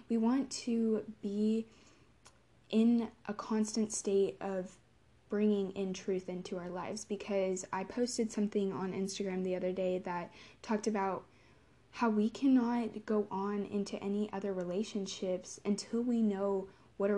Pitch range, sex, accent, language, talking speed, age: 185-215 Hz, female, American, English, 145 wpm, 20-39